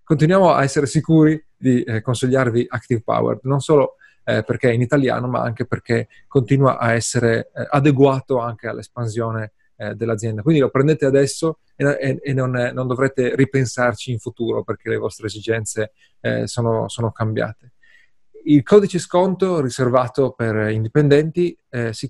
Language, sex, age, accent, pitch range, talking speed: Italian, male, 30-49, native, 115-150 Hz, 130 wpm